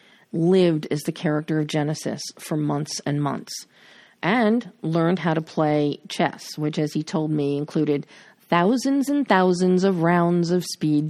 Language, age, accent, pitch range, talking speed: English, 40-59, American, 155-200 Hz, 155 wpm